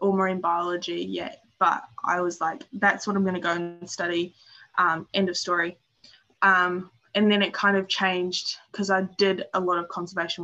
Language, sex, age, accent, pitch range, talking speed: English, female, 10-29, Australian, 175-195 Hz, 185 wpm